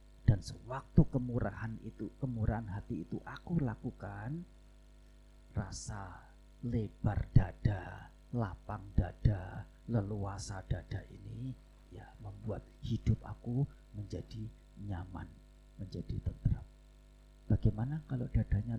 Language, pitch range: Indonesian, 95-125 Hz